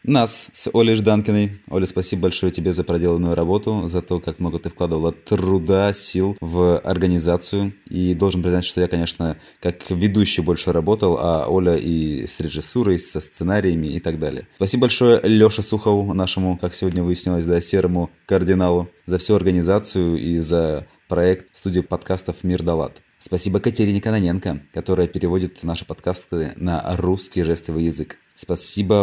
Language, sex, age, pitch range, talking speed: Russian, male, 20-39, 85-95 Hz, 150 wpm